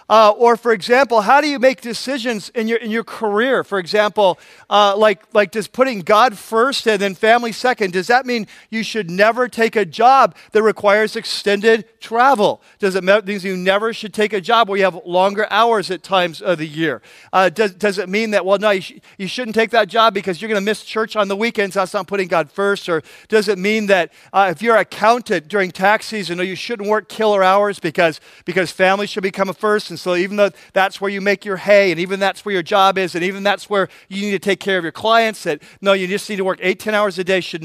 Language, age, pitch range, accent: English, 40-59, 190-225 Hz, American